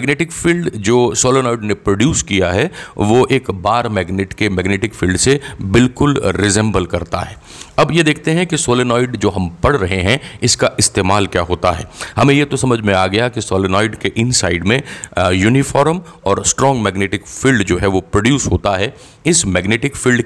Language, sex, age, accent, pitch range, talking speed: Hindi, male, 40-59, native, 95-120 Hz, 185 wpm